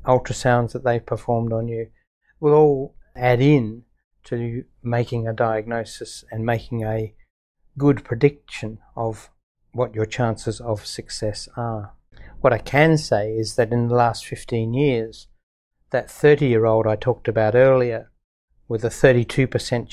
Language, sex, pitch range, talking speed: English, male, 110-130 Hz, 140 wpm